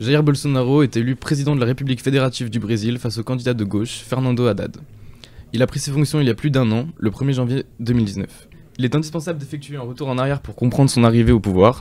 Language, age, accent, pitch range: French, 20-39, French, 115-135 Hz